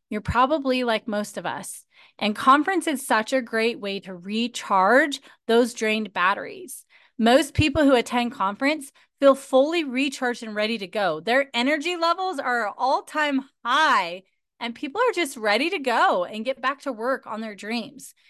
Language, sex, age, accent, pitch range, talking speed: English, female, 30-49, American, 215-275 Hz, 165 wpm